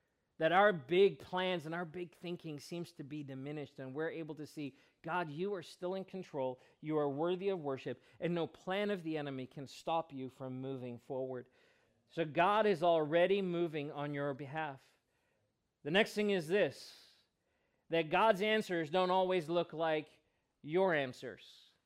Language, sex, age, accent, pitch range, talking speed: English, male, 40-59, American, 145-185 Hz, 170 wpm